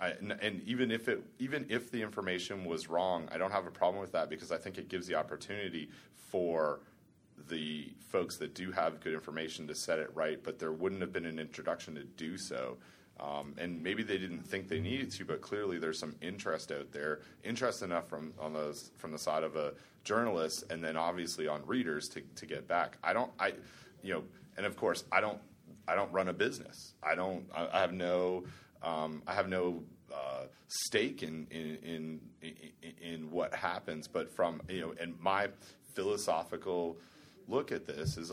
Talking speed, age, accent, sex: 200 wpm, 30-49, American, male